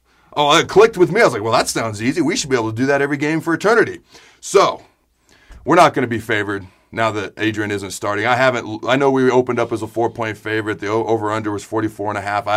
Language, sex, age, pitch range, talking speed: English, male, 40-59, 110-140 Hz, 240 wpm